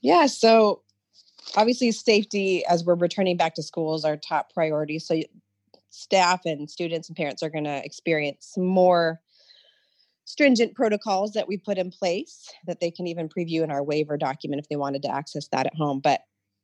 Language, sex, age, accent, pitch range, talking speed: English, female, 30-49, American, 155-195 Hz, 180 wpm